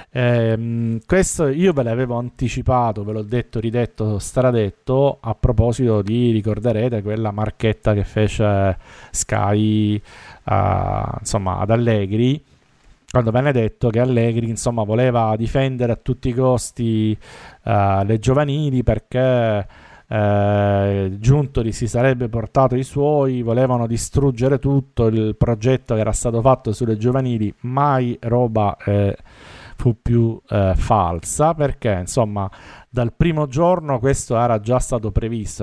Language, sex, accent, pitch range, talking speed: Italian, male, native, 105-125 Hz, 125 wpm